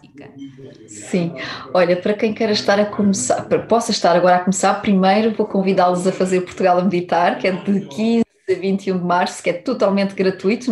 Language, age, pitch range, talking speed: Portuguese, 20-39, 185-230 Hz, 190 wpm